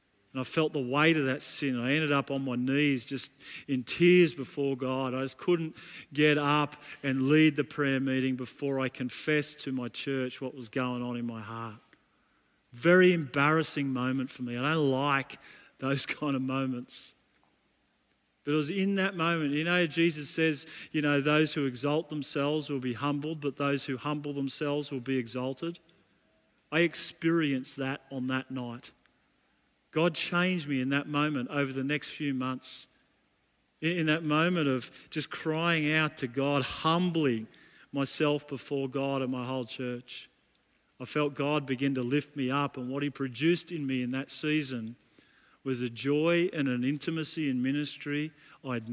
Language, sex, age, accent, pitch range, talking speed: English, male, 40-59, Australian, 130-150 Hz, 175 wpm